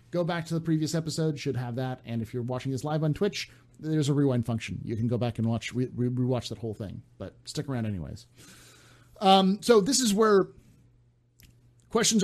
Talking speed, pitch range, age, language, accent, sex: 210 wpm, 115-150 Hz, 40-59, English, American, male